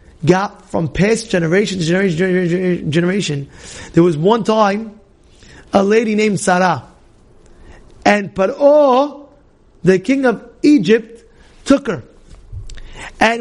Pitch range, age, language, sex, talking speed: 205-310 Hz, 30-49, English, male, 110 wpm